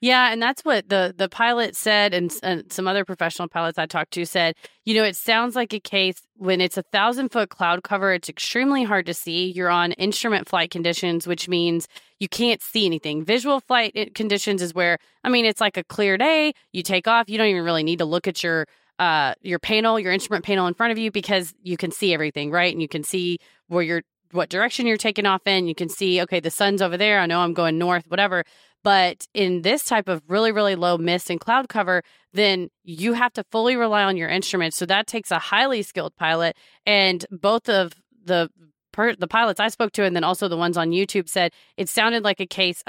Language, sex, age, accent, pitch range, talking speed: English, female, 30-49, American, 175-215 Hz, 230 wpm